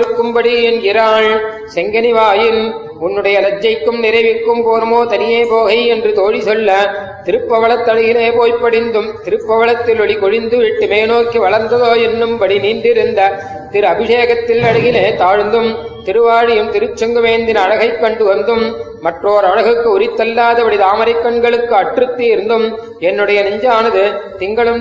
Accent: native